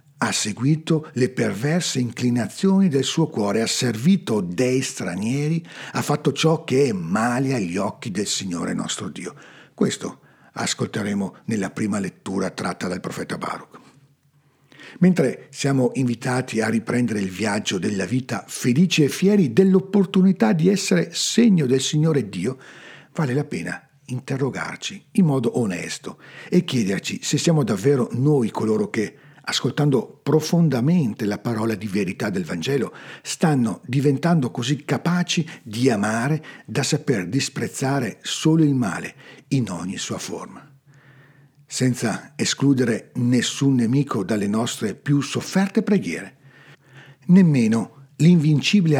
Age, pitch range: 50-69, 125-160 Hz